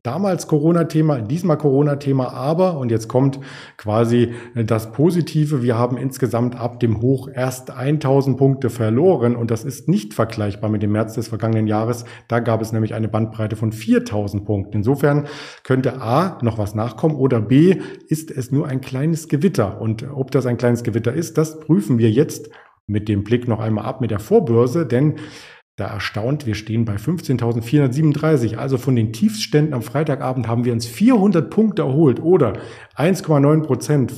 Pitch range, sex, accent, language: 115-150 Hz, male, German, German